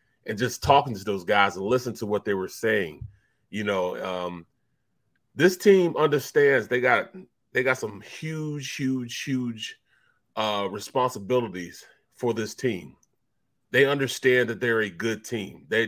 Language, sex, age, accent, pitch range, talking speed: English, male, 30-49, American, 120-170 Hz, 150 wpm